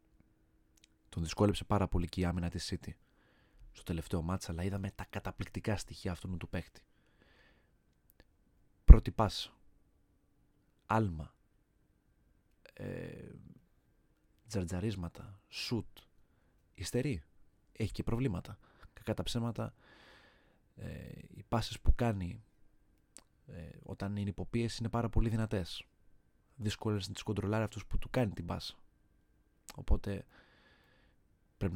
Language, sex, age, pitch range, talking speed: Greek, male, 30-49, 90-110 Hz, 105 wpm